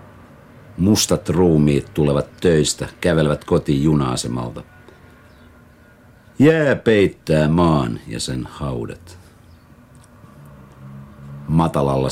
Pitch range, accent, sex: 70-85 Hz, native, male